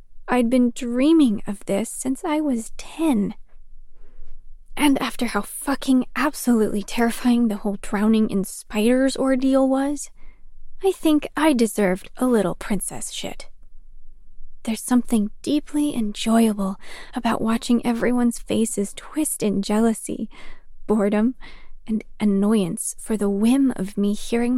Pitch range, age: 210-270 Hz, 20-39